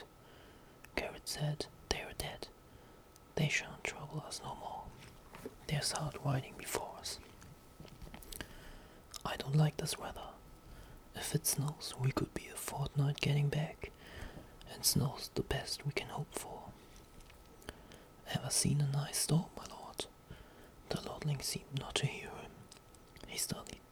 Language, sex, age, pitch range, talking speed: English, male, 20-39, 145-155 Hz, 135 wpm